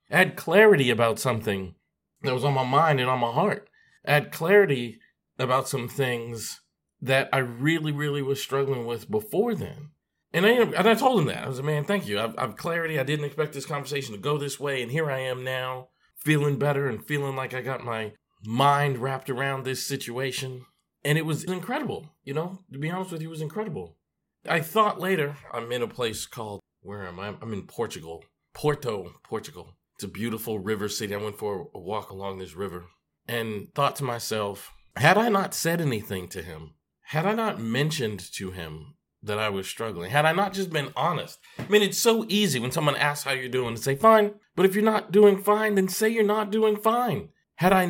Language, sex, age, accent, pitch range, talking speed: English, male, 40-59, American, 120-185 Hz, 210 wpm